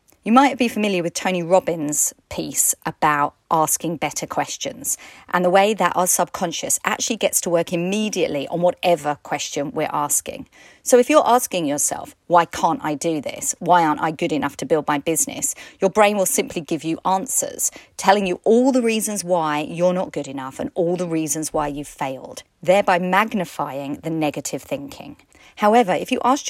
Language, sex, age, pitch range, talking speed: English, female, 40-59, 155-215 Hz, 180 wpm